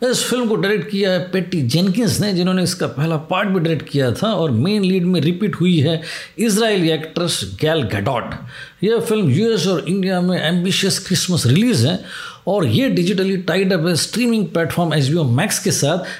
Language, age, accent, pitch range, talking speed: Hindi, 50-69, native, 155-195 Hz, 185 wpm